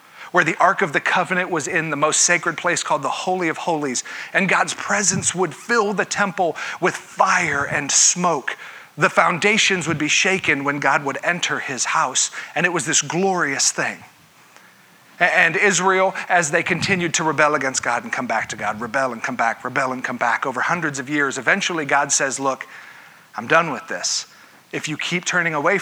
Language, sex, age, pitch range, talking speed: English, male, 40-59, 145-180 Hz, 195 wpm